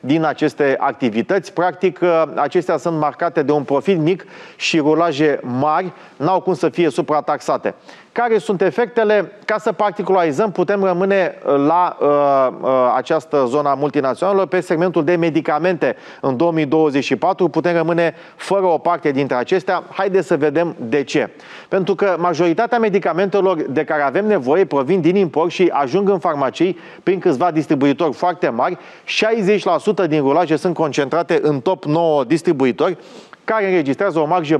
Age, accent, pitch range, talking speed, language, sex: 30-49, native, 150-190 Hz, 145 wpm, Romanian, male